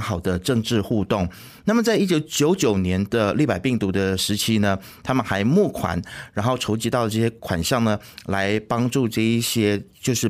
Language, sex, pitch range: Chinese, male, 100-135 Hz